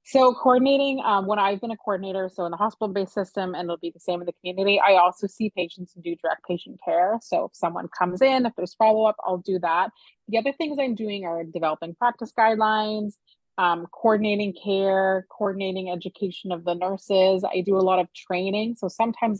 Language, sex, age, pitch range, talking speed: English, female, 30-49, 180-210 Hz, 210 wpm